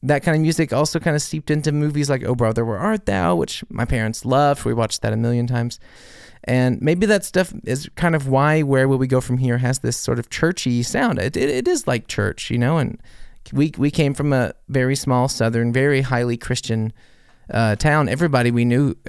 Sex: male